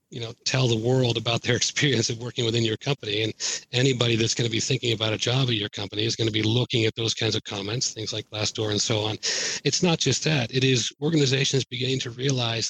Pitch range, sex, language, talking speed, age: 115-130 Hz, male, English, 245 wpm, 40-59